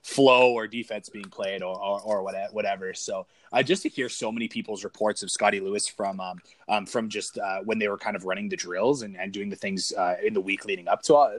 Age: 20-39